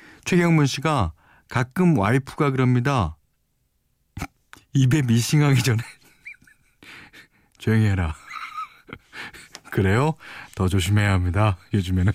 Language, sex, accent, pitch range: Korean, male, native, 100-150 Hz